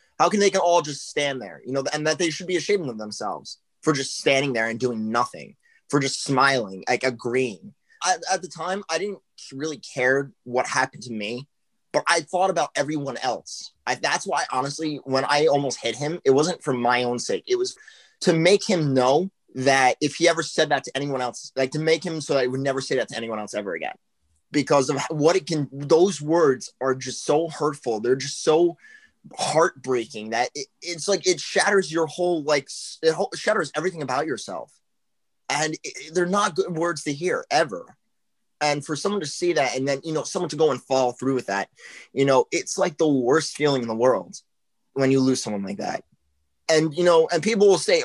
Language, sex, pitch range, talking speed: English, male, 135-175 Hz, 215 wpm